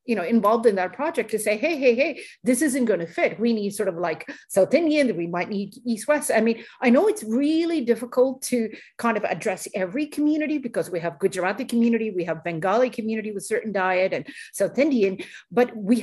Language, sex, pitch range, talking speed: English, female, 190-245 Hz, 215 wpm